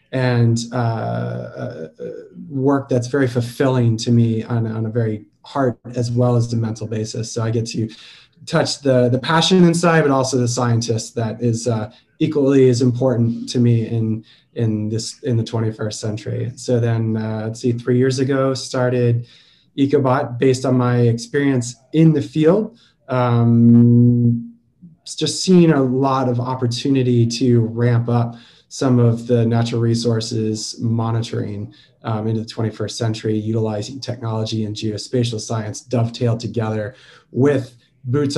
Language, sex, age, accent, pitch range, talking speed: English, male, 20-39, American, 115-130 Hz, 145 wpm